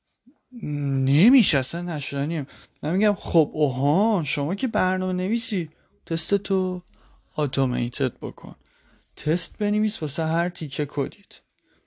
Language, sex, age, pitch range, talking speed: Persian, male, 30-49, 150-230 Hz, 105 wpm